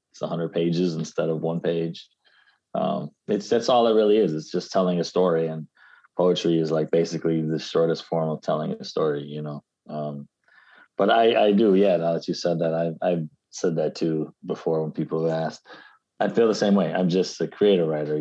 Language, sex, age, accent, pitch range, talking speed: English, male, 20-39, American, 75-90 Hz, 210 wpm